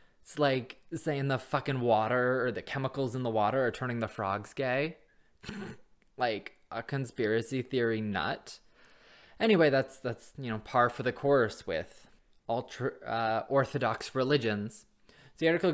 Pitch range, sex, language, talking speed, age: 110-135 Hz, male, English, 145 wpm, 20-39